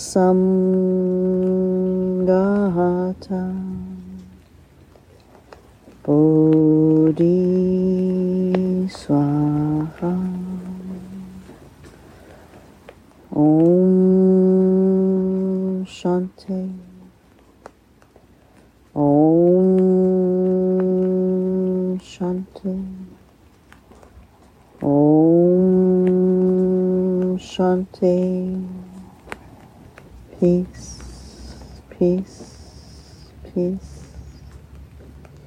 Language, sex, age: English, female, 40-59